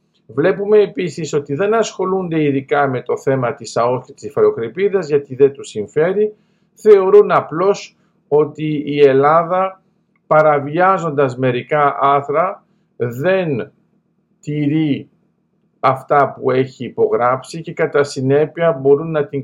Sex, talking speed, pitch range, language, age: male, 110 wpm, 140-195 Hz, Greek, 50-69